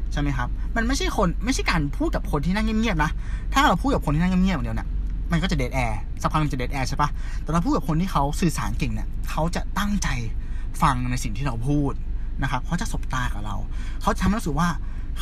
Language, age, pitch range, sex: Thai, 20-39, 120-170 Hz, male